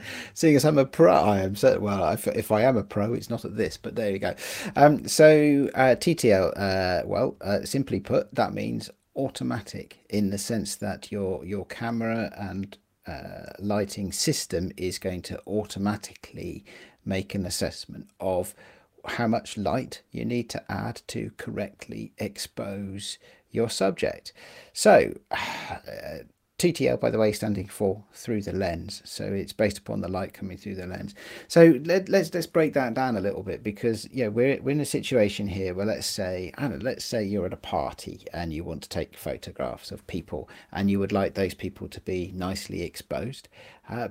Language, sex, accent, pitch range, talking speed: English, male, British, 95-115 Hz, 185 wpm